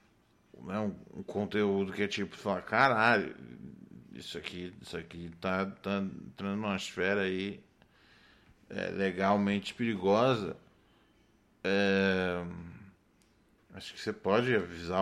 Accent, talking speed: Brazilian, 105 wpm